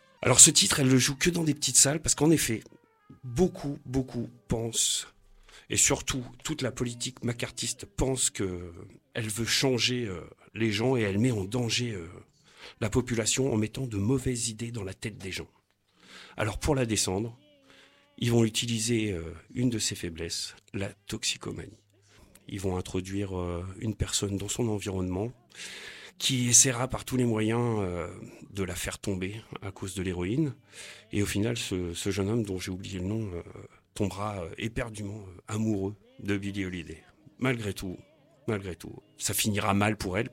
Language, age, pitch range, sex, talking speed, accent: French, 40-59, 100-125 Hz, male, 175 wpm, French